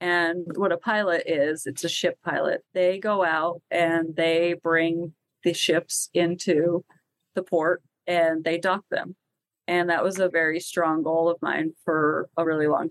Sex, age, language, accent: female, 30-49, English, American